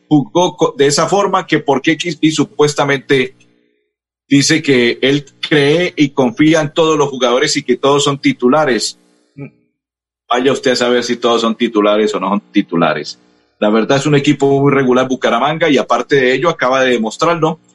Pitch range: 120-190 Hz